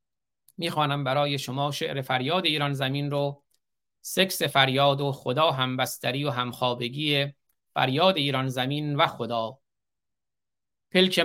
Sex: male